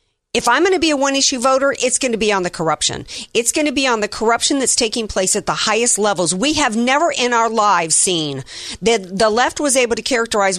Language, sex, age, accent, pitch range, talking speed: English, female, 50-69, American, 185-240 Hz, 250 wpm